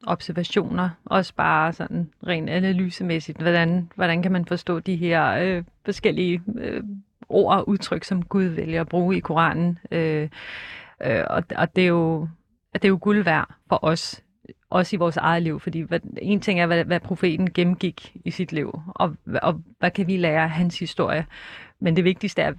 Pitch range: 165-190 Hz